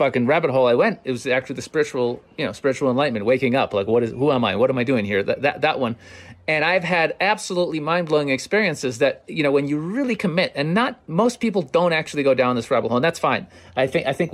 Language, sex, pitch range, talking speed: English, male, 130-175 Hz, 265 wpm